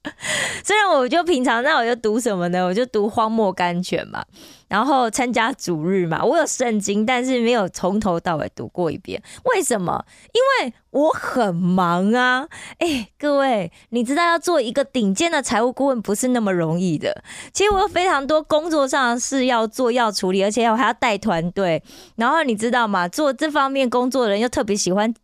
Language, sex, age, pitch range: Korean, female, 20-39, 200-275 Hz